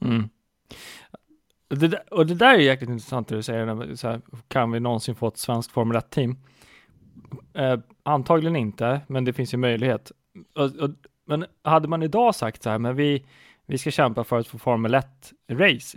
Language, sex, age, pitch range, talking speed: Swedish, male, 20-39, 115-150 Hz, 180 wpm